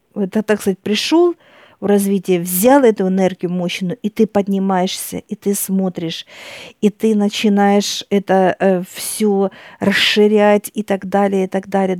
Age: 50-69